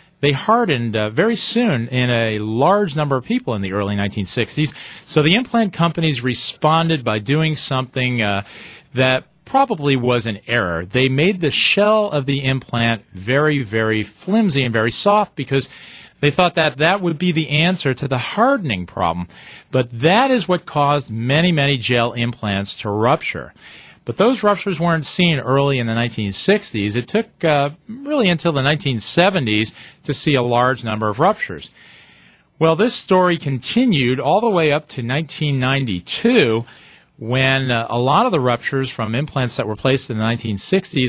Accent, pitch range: American, 115-170 Hz